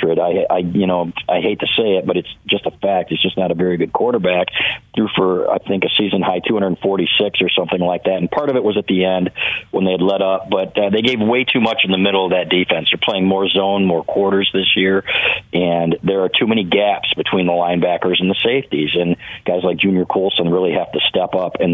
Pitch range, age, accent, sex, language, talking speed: 90-100 Hz, 40-59, American, male, English, 245 wpm